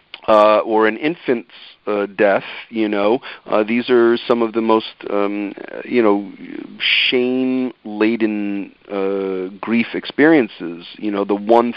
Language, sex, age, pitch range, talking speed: English, male, 40-59, 100-125 Hz, 125 wpm